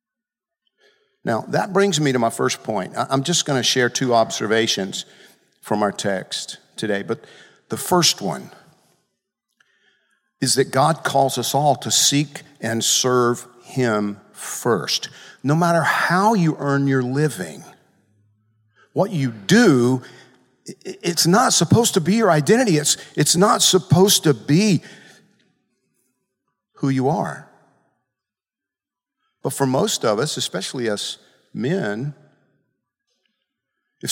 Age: 50-69